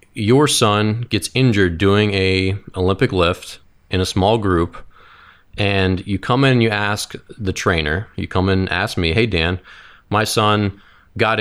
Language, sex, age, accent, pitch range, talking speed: English, male, 30-49, American, 90-110 Hz, 170 wpm